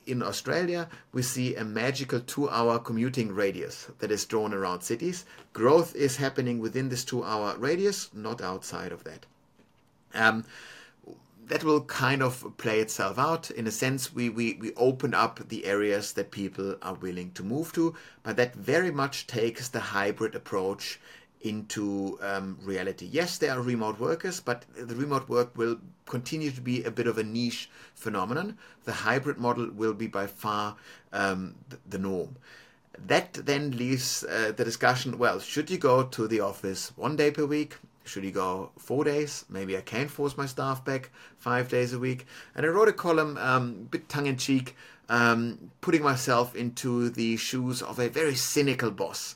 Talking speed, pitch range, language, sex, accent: 175 wpm, 110-140 Hz, English, male, German